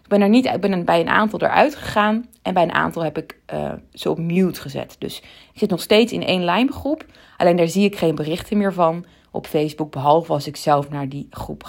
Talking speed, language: 250 wpm, Dutch